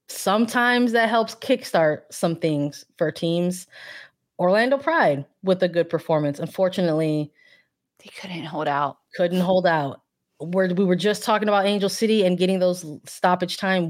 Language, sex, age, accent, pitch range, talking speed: English, female, 20-39, American, 150-195 Hz, 145 wpm